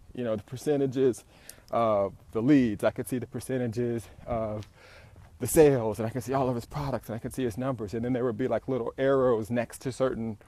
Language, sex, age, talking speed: English, male, 30-49, 230 wpm